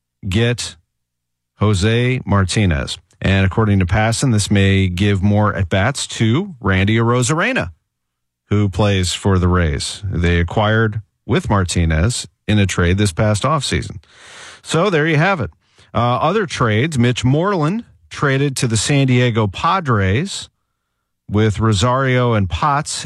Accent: American